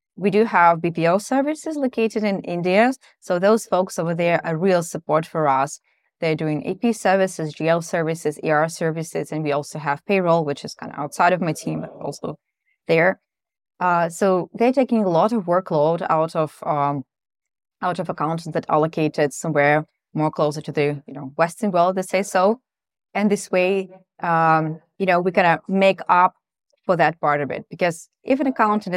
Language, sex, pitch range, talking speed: English, female, 160-195 Hz, 190 wpm